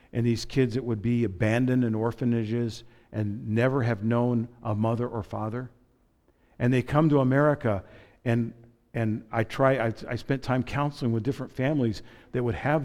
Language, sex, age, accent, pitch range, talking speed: English, male, 50-69, American, 110-135 Hz, 175 wpm